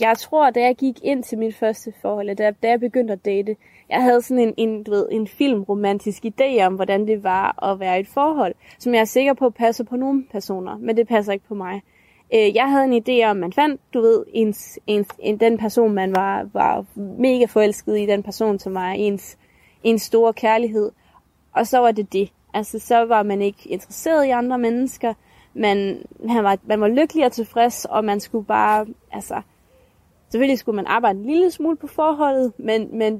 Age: 20-39